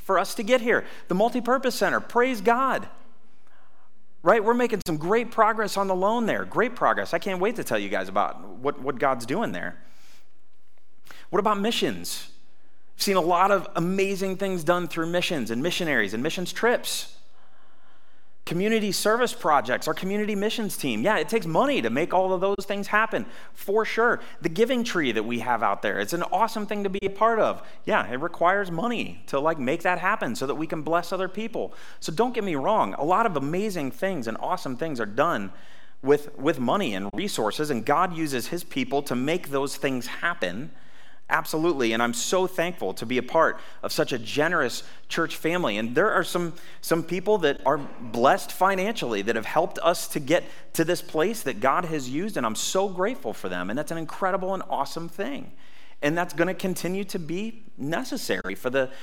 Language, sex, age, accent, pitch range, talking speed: English, male, 30-49, American, 165-210 Hz, 195 wpm